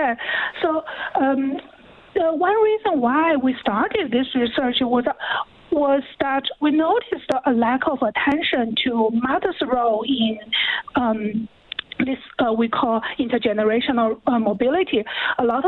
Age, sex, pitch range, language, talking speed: 50-69, female, 245-310 Hz, English, 130 wpm